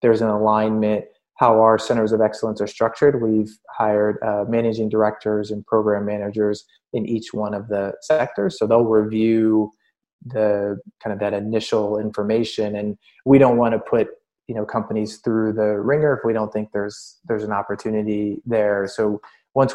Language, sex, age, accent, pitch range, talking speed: English, male, 20-39, American, 105-115 Hz, 170 wpm